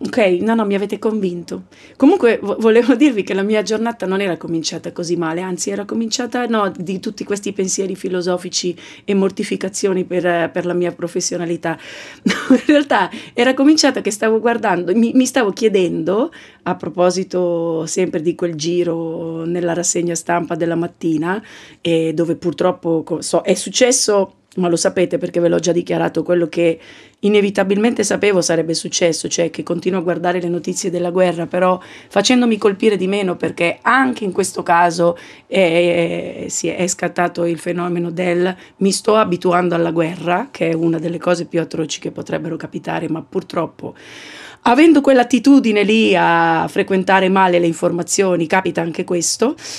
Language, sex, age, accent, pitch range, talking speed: Italian, female, 30-49, native, 170-215 Hz, 155 wpm